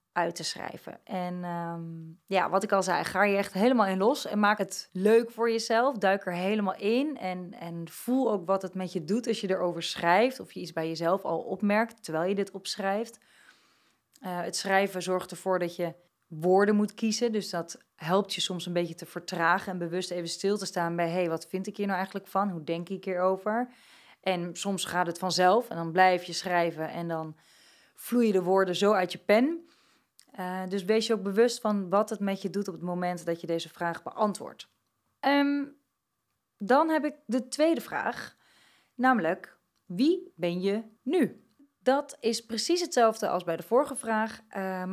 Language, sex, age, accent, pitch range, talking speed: Dutch, female, 20-39, Dutch, 180-225 Hz, 200 wpm